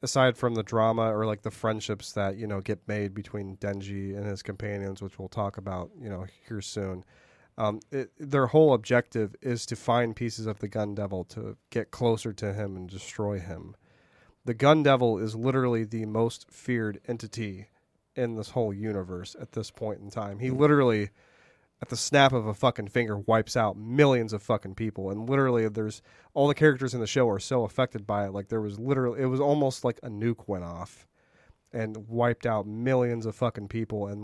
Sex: male